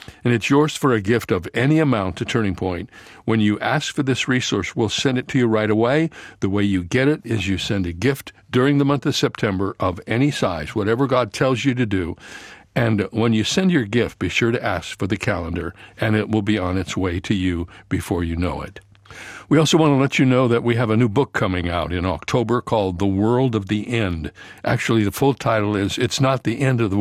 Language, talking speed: English, 240 wpm